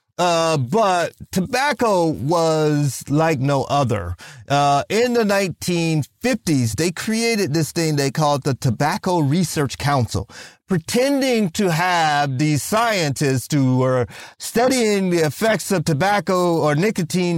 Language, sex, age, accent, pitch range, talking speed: English, male, 30-49, American, 145-195 Hz, 120 wpm